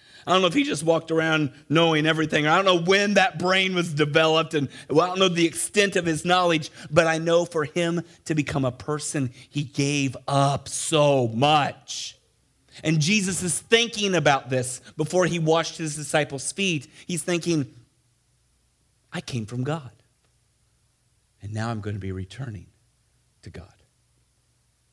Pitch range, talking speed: 130-190 Hz, 160 wpm